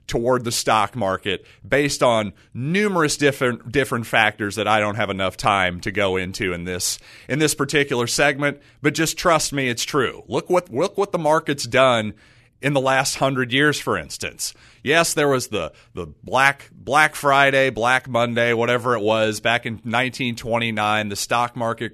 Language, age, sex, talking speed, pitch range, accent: English, 30-49, male, 175 wpm, 110-140 Hz, American